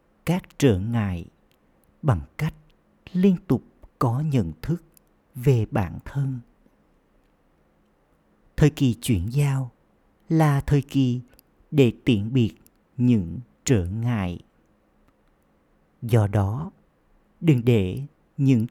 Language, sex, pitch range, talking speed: Vietnamese, male, 100-140 Hz, 100 wpm